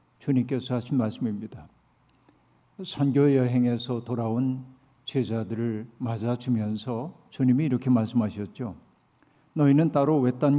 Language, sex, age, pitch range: Korean, male, 50-69, 120-145 Hz